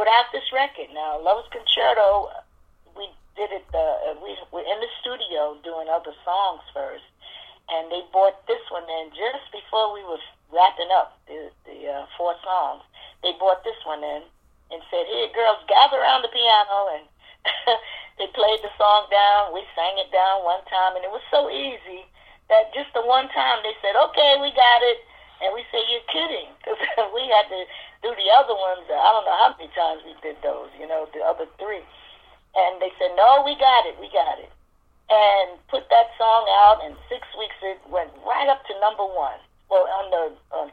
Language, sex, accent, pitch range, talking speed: English, female, American, 165-235 Hz, 195 wpm